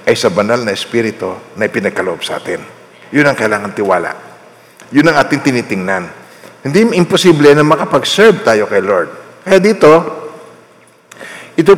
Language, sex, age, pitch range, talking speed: Filipino, male, 50-69, 125-180 Hz, 130 wpm